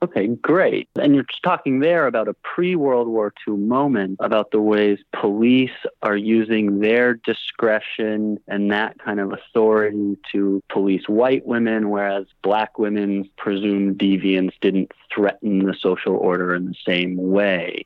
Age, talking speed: 30-49, 150 wpm